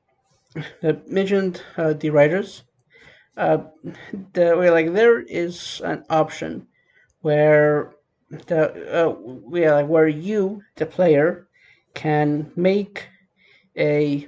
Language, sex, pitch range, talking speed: English, male, 150-180 Hz, 110 wpm